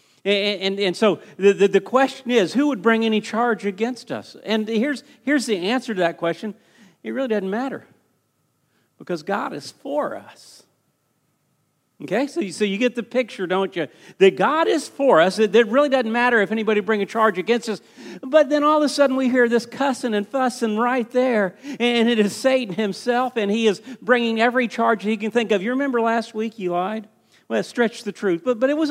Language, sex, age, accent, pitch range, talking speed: English, male, 50-69, American, 205-270 Hz, 215 wpm